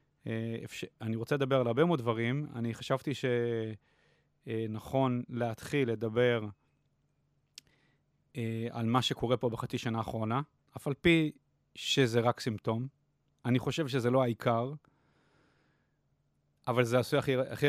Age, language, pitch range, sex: 30-49, Hebrew, 115-140 Hz, male